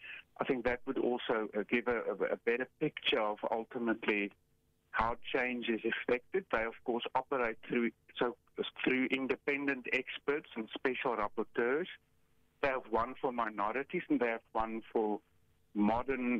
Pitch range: 105-125 Hz